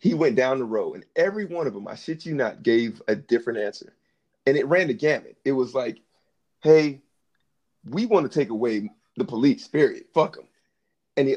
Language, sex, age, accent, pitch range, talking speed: English, male, 30-49, American, 125-175 Hz, 205 wpm